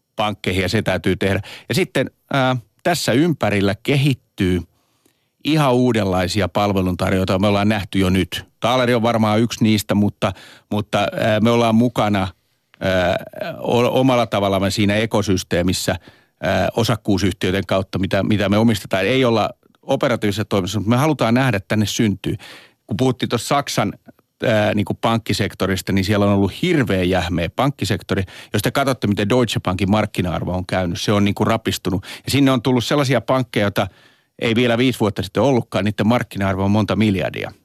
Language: Finnish